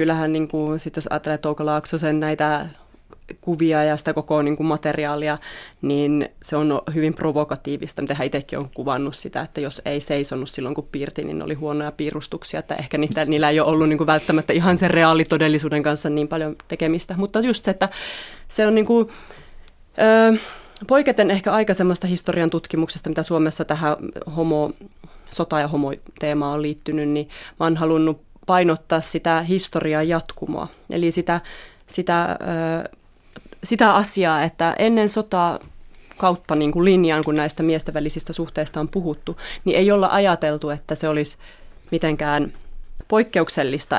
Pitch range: 150-170 Hz